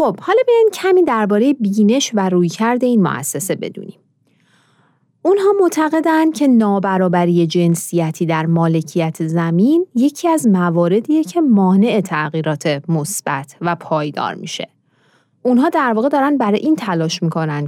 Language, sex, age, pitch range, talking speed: Persian, female, 30-49, 165-230 Hz, 130 wpm